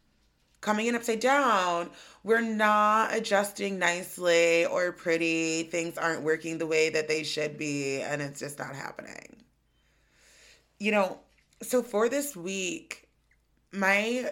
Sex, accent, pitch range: female, American, 160-200 Hz